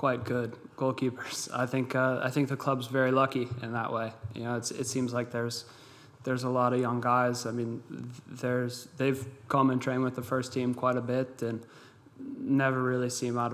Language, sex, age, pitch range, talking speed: Finnish, male, 20-39, 120-135 Hz, 210 wpm